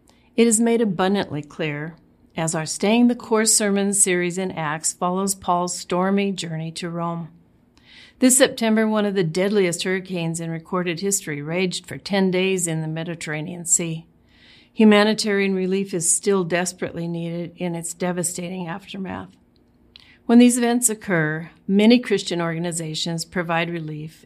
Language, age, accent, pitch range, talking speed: English, 50-69, American, 165-205 Hz, 140 wpm